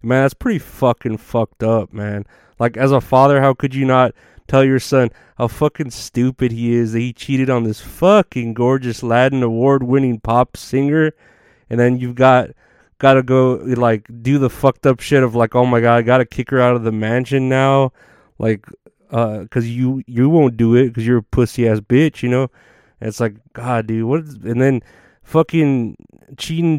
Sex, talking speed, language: male, 200 wpm, English